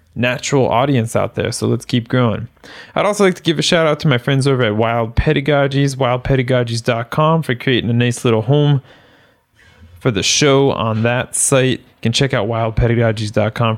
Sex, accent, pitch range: male, American, 105-135 Hz